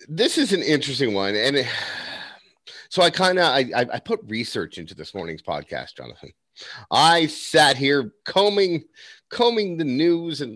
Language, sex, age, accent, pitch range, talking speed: English, male, 30-49, American, 110-160 Hz, 155 wpm